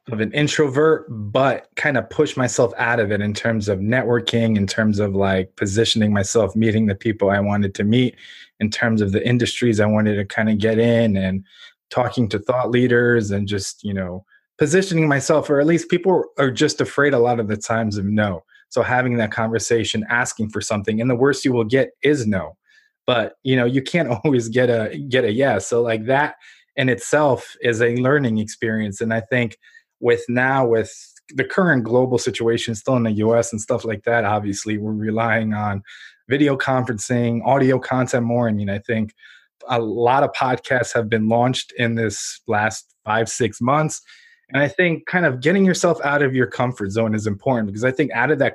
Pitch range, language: 110-135 Hz, English